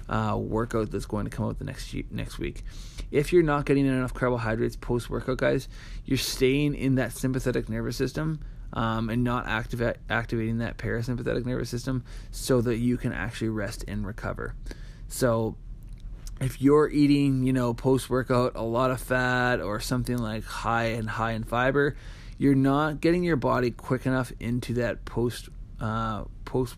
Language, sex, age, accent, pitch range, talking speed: English, male, 20-39, American, 110-130 Hz, 165 wpm